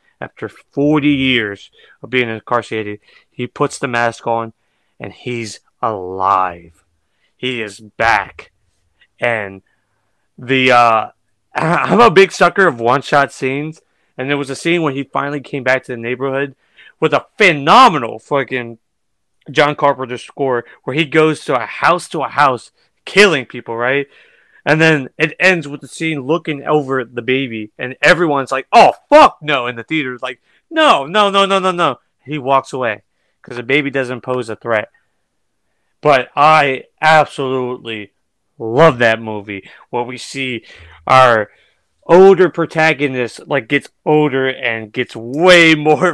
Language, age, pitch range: English, 30-49, 115-150 Hz